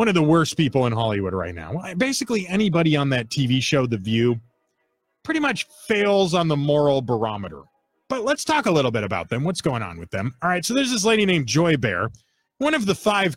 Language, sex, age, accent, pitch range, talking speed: English, male, 30-49, American, 125-185 Hz, 225 wpm